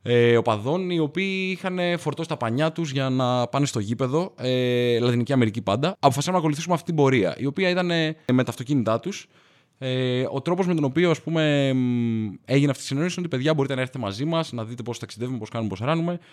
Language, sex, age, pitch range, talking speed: Greek, male, 20-39, 120-150 Hz, 215 wpm